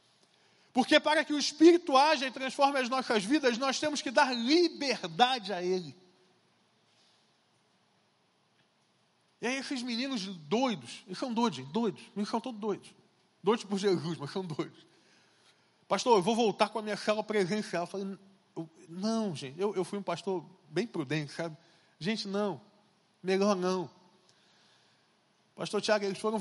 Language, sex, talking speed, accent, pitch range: Portuguese, male, 150 wpm, Brazilian, 185-235 Hz